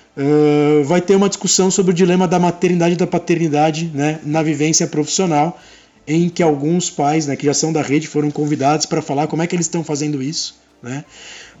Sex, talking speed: male, 195 wpm